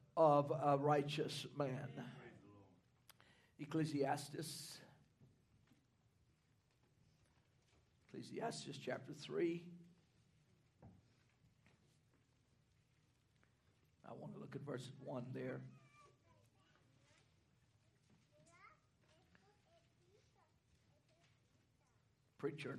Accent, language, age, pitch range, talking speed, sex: American, English, 60-79, 145-210 Hz, 45 wpm, male